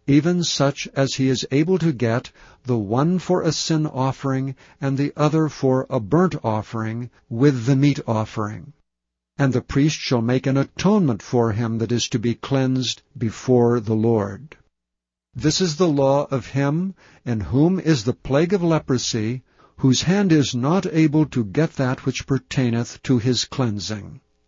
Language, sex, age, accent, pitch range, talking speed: English, male, 60-79, American, 120-145 Hz, 165 wpm